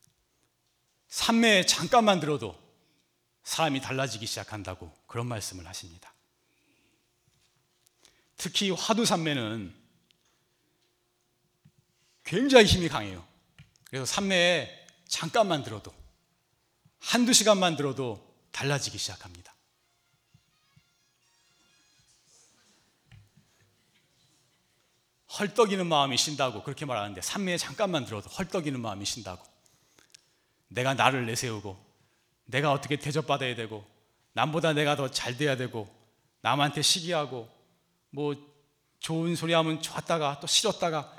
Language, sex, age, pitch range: Korean, male, 40-59, 110-175 Hz